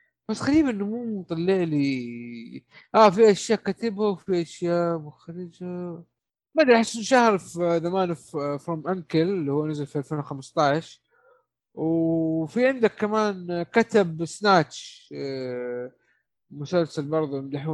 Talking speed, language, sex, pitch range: 110 wpm, Arabic, male, 155-210 Hz